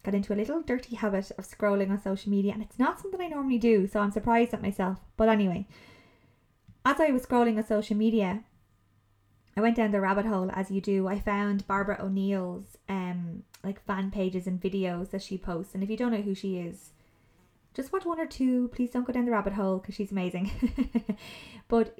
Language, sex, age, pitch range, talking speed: English, female, 20-39, 195-230 Hz, 215 wpm